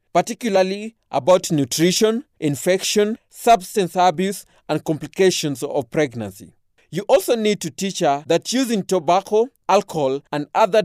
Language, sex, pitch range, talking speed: English, male, 145-205 Hz, 120 wpm